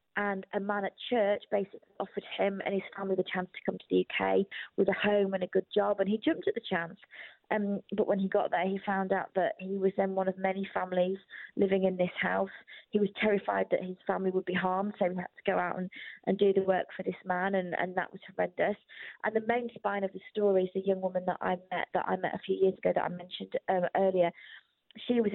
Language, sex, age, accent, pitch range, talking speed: English, female, 20-39, British, 185-210 Hz, 255 wpm